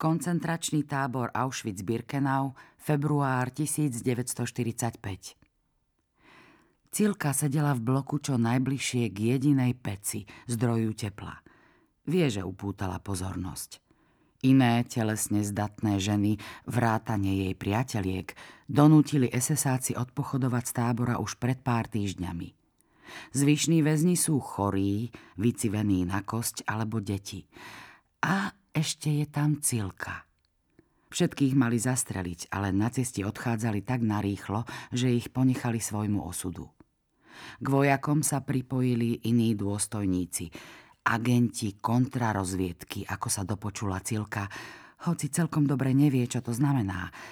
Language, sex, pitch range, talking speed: Slovak, female, 100-135 Hz, 105 wpm